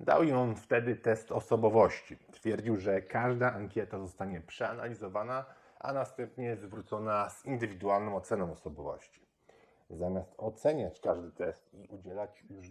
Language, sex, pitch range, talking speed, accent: Polish, male, 95-115 Hz, 125 wpm, native